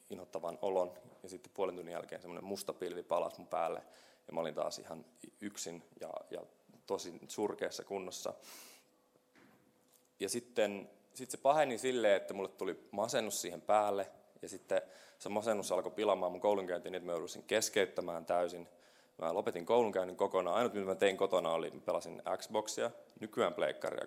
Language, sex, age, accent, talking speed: Finnish, male, 20-39, native, 155 wpm